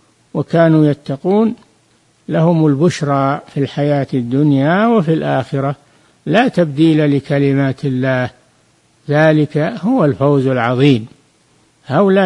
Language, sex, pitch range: Arabic, male, 140-170 Hz